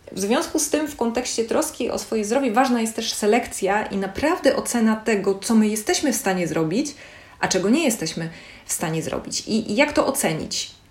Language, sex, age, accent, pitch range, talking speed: Polish, female, 30-49, native, 180-250 Hz, 200 wpm